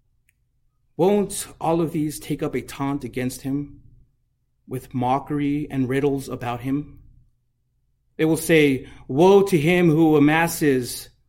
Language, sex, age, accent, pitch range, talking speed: English, male, 30-49, American, 125-155 Hz, 130 wpm